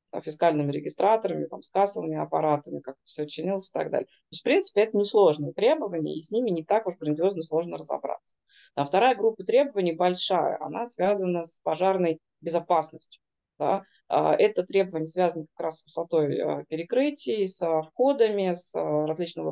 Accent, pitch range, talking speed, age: native, 160-195 Hz, 155 wpm, 20-39